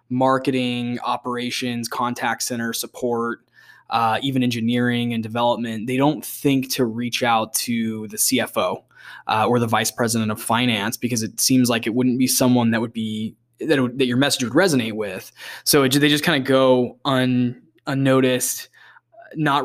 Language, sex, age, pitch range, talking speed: English, male, 10-29, 115-130 Hz, 165 wpm